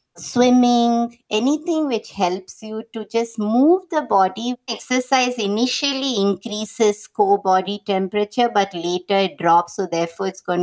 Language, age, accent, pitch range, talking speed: English, 50-69, Indian, 185-230 Hz, 135 wpm